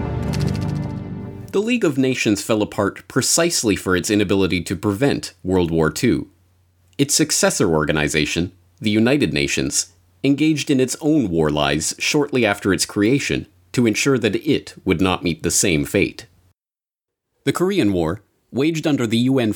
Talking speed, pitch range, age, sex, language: 145 wpm, 90-125 Hz, 30-49, male, English